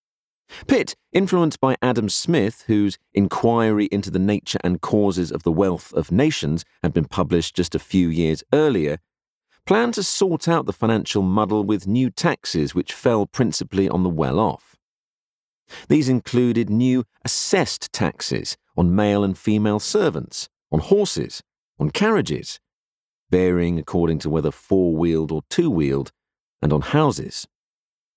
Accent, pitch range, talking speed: British, 90-130 Hz, 140 wpm